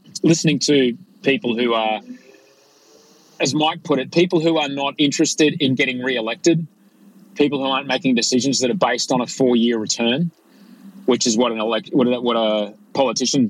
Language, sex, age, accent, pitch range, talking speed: English, male, 30-49, Australian, 115-170 Hz, 175 wpm